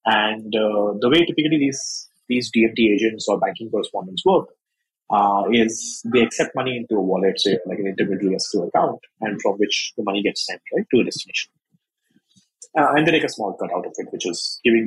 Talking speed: 210 wpm